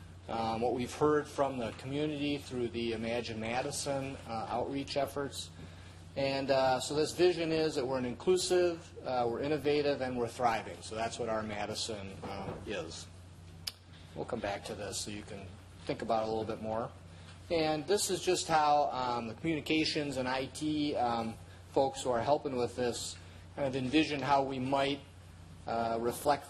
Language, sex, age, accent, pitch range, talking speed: English, male, 30-49, American, 100-140 Hz, 175 wpm